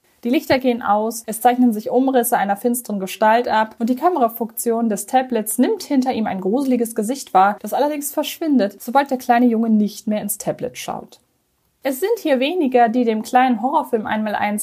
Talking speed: 185 wpm